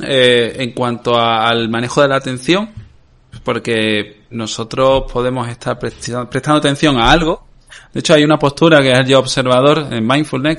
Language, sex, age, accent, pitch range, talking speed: Spanish, male, 20-39, Spanish, 115-145 Hz, 170 wpm